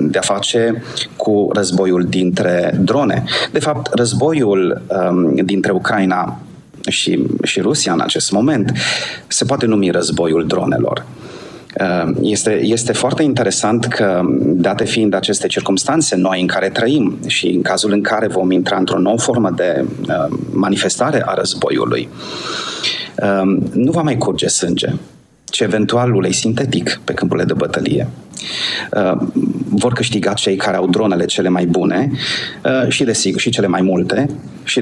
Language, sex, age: Romanian, male, 30-49